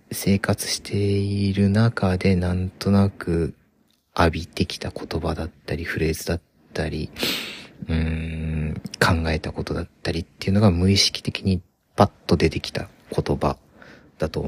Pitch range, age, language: 80-100 Hz, 40-59, Japanese